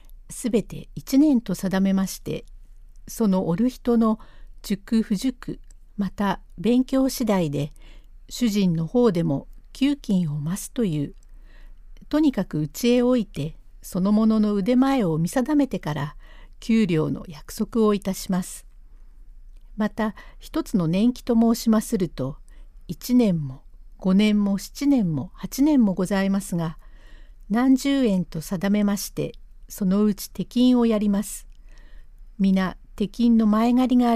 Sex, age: female, 60-79